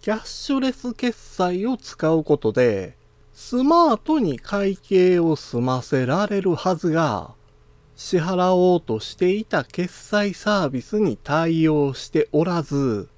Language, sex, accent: Japanese, male, native